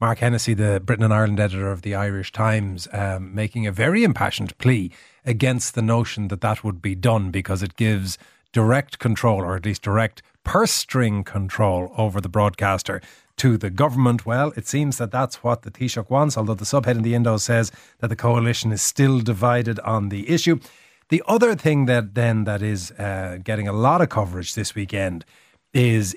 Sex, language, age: male, English, 30-49